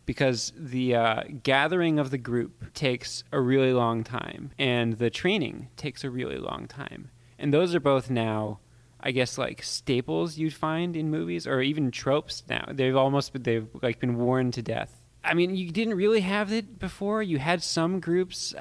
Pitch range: 120-150 Hz